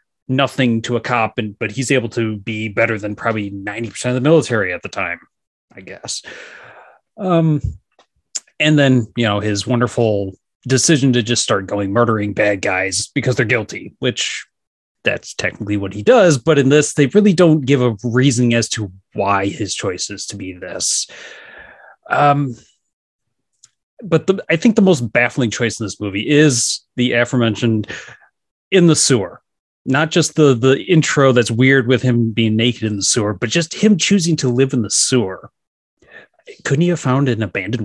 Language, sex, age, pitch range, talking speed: English, male, 30-49, 105-145 Hz, 175 wpm